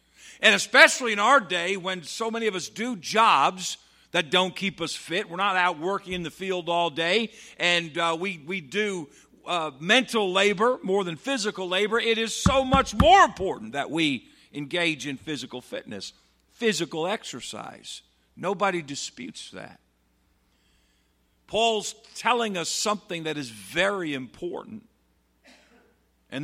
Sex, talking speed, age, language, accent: male, 145 wpm, 50-69, English, American